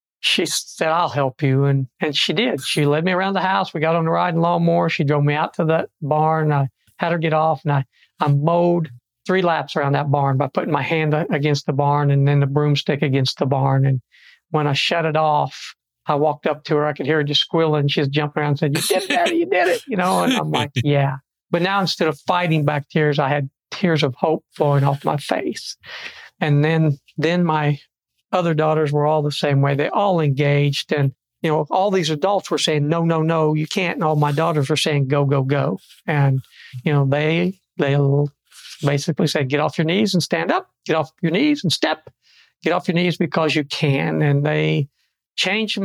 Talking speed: 225 wpm